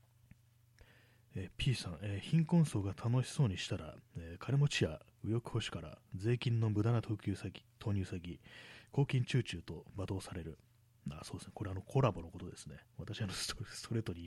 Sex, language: male, Japanese